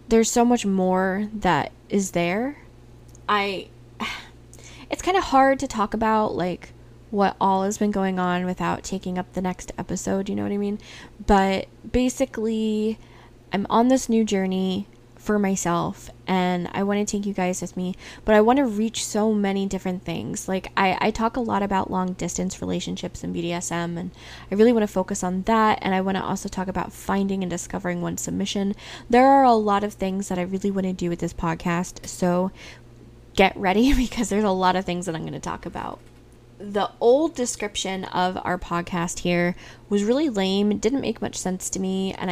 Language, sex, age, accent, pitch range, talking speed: English, female, 10-29, American, 180-225 Hz, 195 wpm